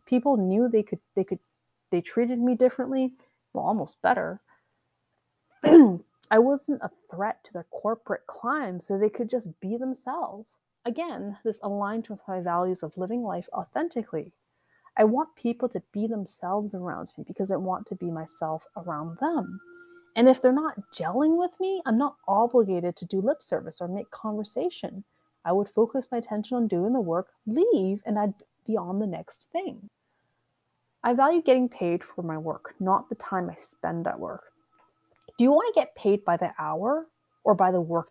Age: 30-49